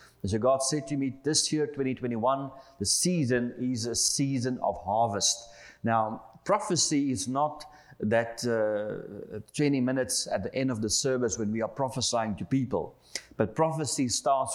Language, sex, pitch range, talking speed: English, male, 115-135 Hz, 155 wpm